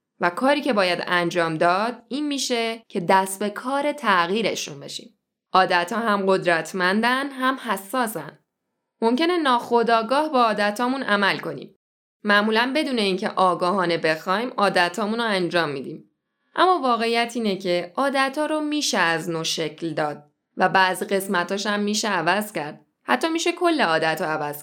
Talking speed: 145 wpm